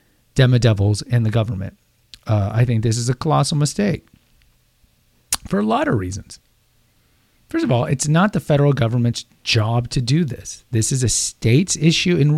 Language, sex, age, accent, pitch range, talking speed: English, male, 40-59, American, 115-155 Hz, 170 wpm